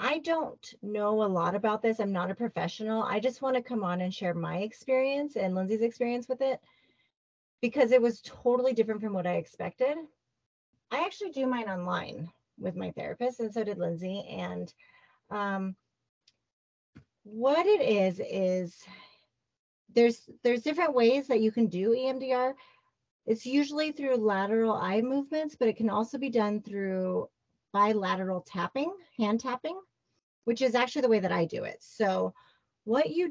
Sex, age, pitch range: female, 30-49, 195-260 Hz